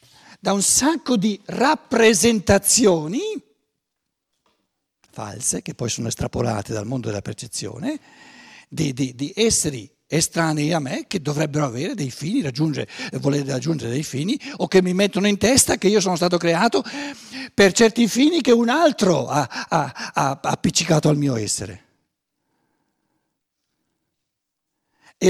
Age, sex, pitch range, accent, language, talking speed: 60-79, male, 140-225 Hz, native, Italian, 135 wpm